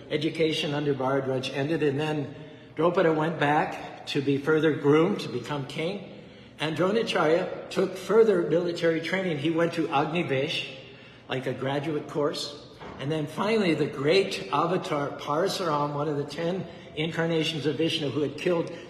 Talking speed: 150 wpm